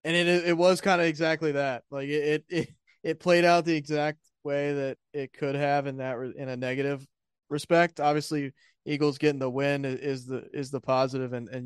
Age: 20-39